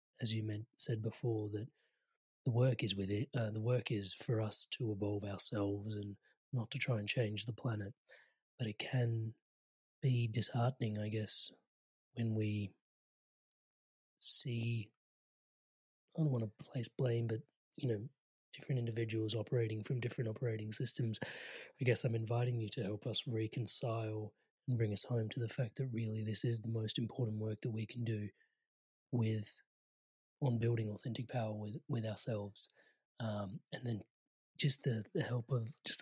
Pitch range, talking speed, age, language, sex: 110-125 Hz, 165 wpm, 30-49, English, male